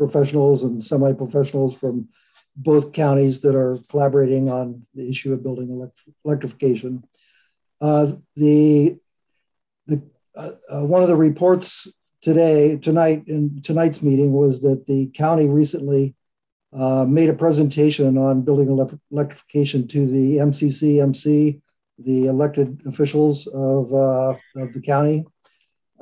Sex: male